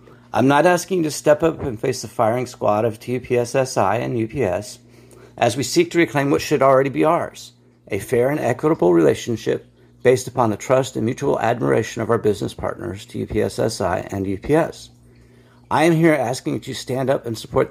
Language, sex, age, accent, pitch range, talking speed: English, male, 50-69, American, 110-140 Hz, 185 wpm